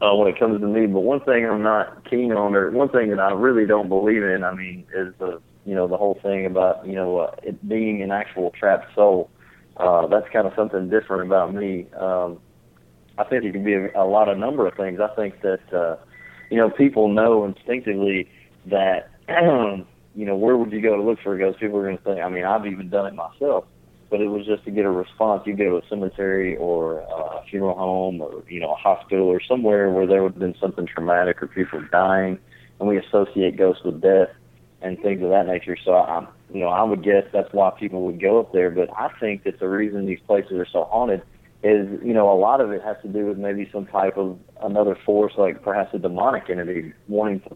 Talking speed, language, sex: 240 wpm, English, male